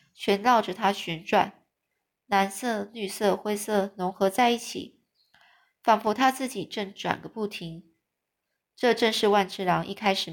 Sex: female